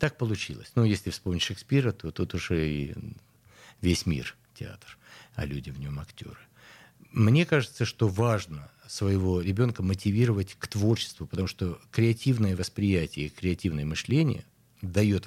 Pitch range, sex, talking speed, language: 85-115 Hz, male, 140 wpm, Russian